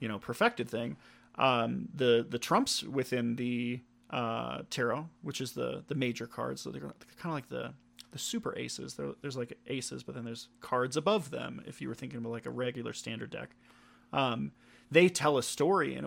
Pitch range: 125-145 Hz